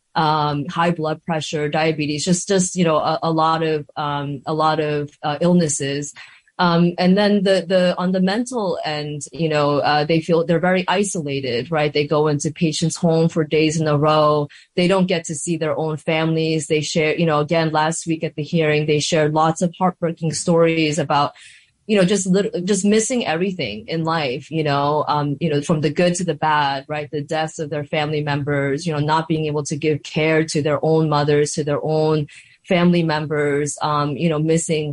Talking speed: 205 wpm